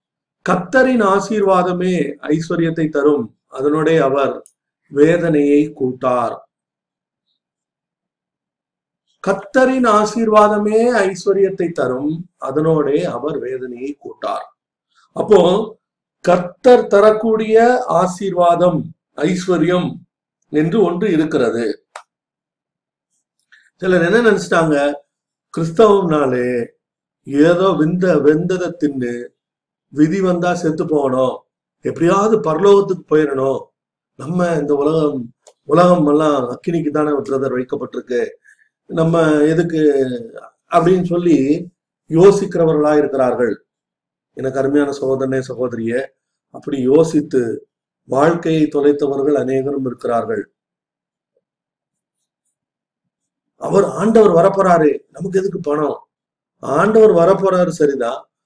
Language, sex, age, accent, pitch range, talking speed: Tamil, male, 50-69, native, 145-195 Hz, 75 wpm